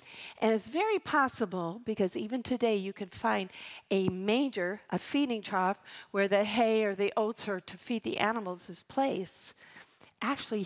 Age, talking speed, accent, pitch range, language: 50-69, 165 wpm, American, 175-215 Hz, English